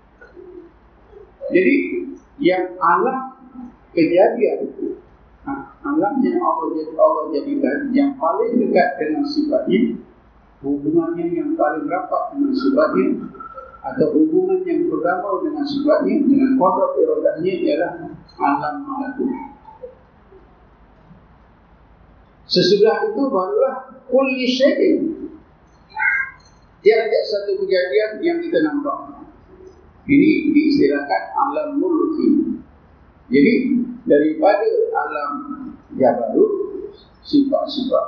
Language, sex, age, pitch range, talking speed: Malay, male, 50-69, 275-370 Hz, 85 wpm